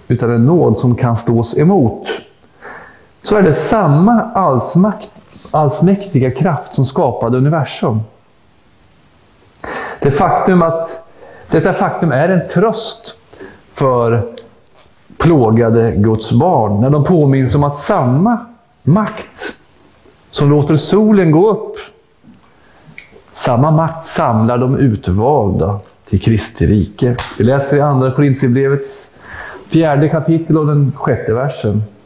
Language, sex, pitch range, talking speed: Swedish, male, 115-165 Hz, 110 wpm